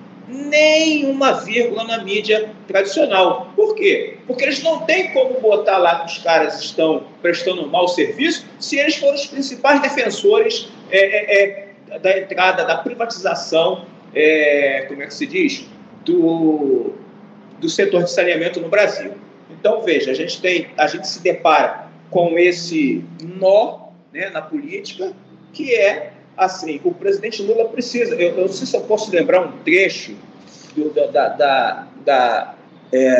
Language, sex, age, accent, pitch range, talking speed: Portuguese, male, 40-59, Brazilian, 175-280 Hz, 155 wpm